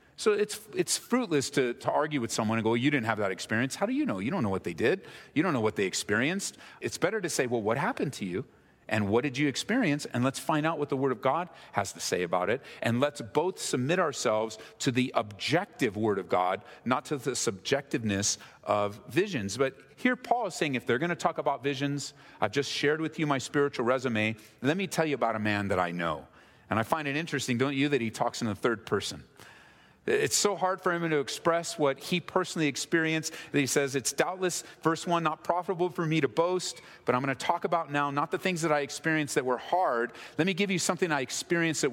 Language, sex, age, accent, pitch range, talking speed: English, male, 40-59, American, 120-175 Hz, 245 wpm